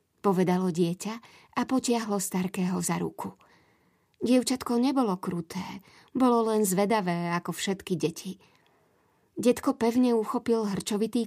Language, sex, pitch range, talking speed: Slovak, female, 185-225 Hz, 105 wpm